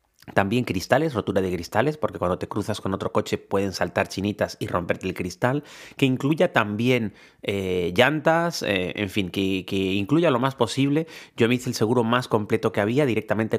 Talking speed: 190 wpm